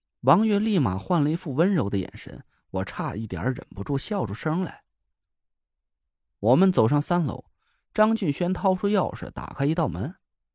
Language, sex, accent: Chinese, male, native